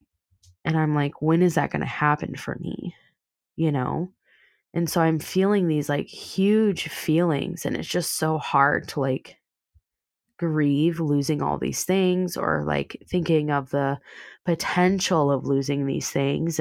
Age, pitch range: 20-39, 140-175 Hz